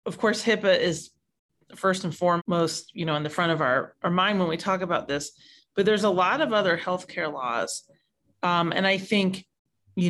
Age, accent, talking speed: 30-49, American, 210 wpm